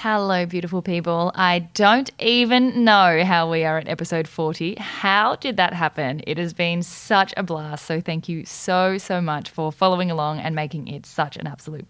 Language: English